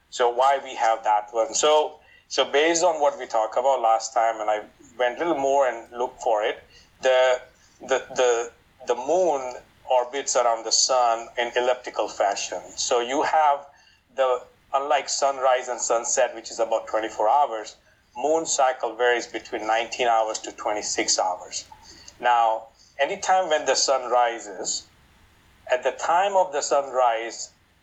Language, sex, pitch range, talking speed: English, male, 115-140 Hz, 155 wpm